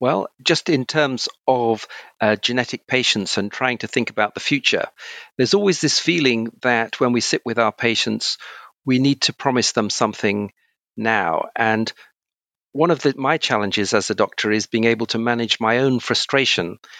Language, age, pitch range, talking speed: English, 50-69, 110-125 Hz, 175 wpm